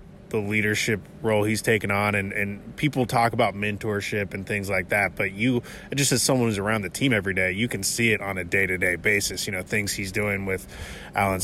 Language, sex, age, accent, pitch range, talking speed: English, male, 20-39, American, 100-115 Hz, 220 wpm